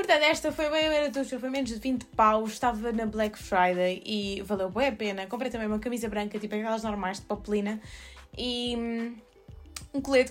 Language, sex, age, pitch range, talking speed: Portuguese, female, 20-39, 205-245 Hz, 190 wpm